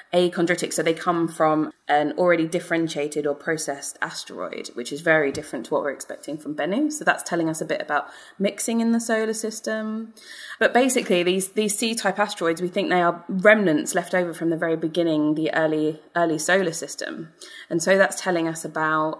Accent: British